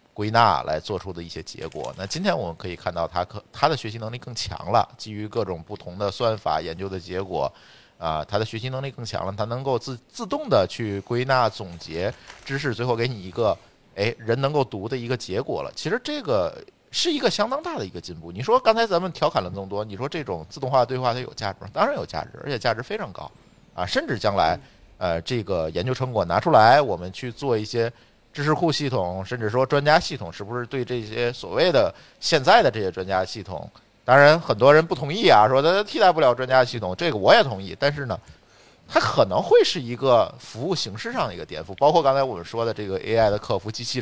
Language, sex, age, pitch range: Chinese, male, 50-69, 100-135 Hz